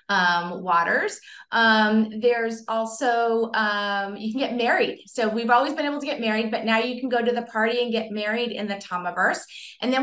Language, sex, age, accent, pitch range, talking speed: English, female, 30-49, American, 215-255 Hz, 205 wpm